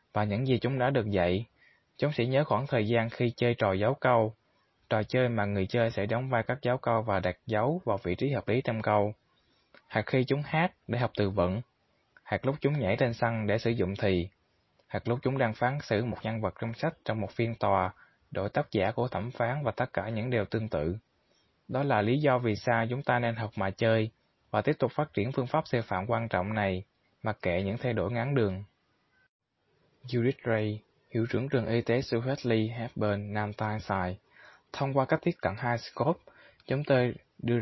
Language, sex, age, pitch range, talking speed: Vietnamese, male, 20-39, 105-125 Hz, 220 wpm